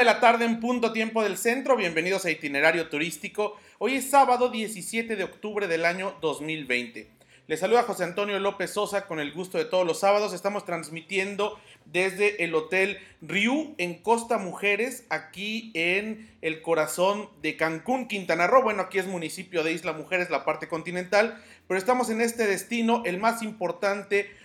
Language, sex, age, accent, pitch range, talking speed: Spanish, male, 40-59, Mexican, 165-210 Hz, 170 wpm